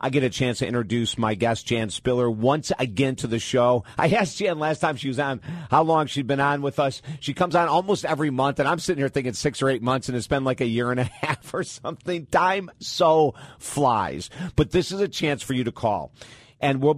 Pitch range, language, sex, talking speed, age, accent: 120-145 Hz, English, male, 245 wpm, 50-69, American